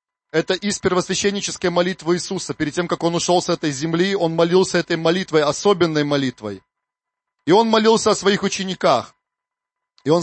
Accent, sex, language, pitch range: native, male, Russian, 175-225 Hz